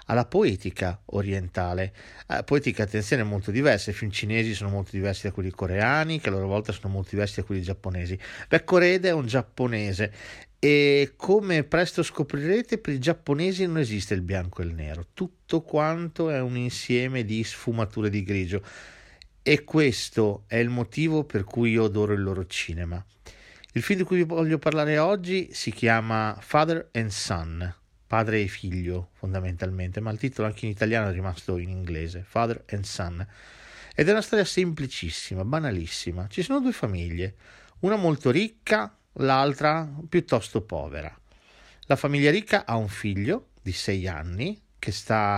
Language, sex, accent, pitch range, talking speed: Italian, male, native, 95-145 Hz, 165 wpm